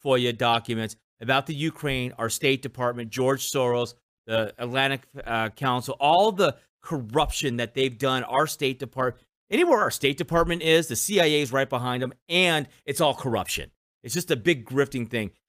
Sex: male